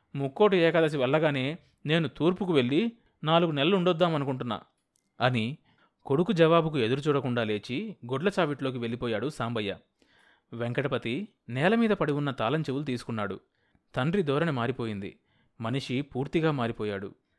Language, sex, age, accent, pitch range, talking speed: Telugu, male, 30-49, native, 120-165 Hz, 100 wpm